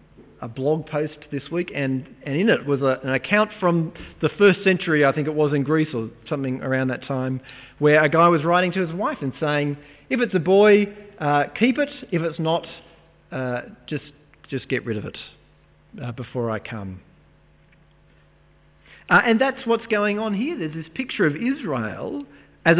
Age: 40-59